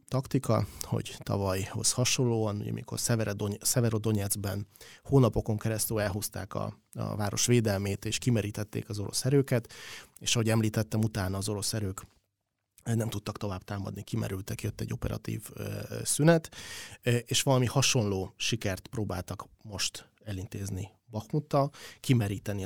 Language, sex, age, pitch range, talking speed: Hungarian, male, 30-49, 100-120 Hz, 115 wpm